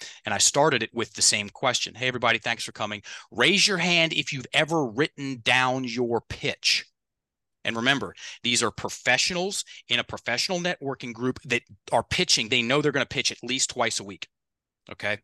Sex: male